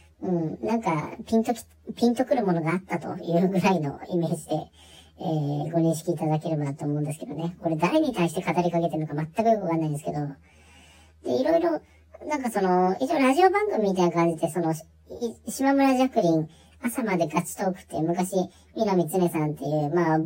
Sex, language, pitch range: male, Japanese, 150-195 Hz